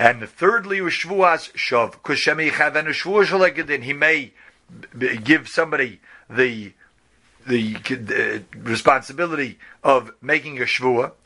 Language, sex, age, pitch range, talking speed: English, male, 40-59, 135-180 Hz, 75 wpm